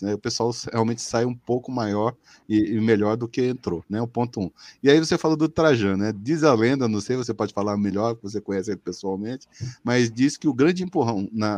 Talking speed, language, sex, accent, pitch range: 230 wpm, Portuguese, male, Brazilian, 115-155 Hz